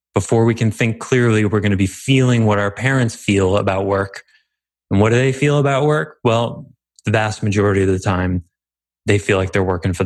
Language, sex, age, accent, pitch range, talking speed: English, male, 20-39, American, 90-115 Hz, 215 wpm